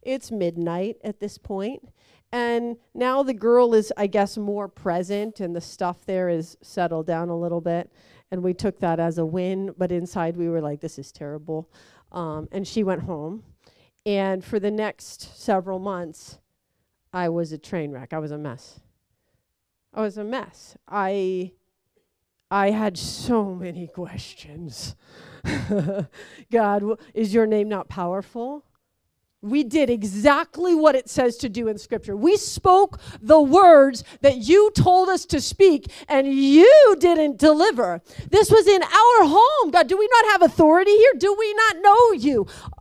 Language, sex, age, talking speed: English, female, 40-59, 165 wpm